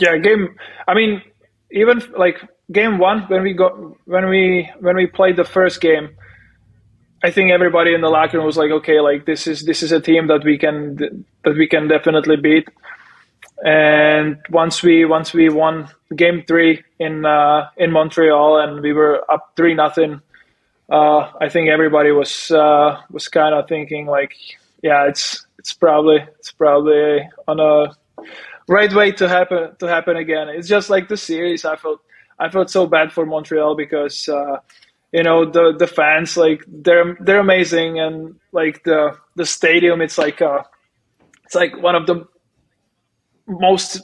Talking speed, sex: 175 wpm, male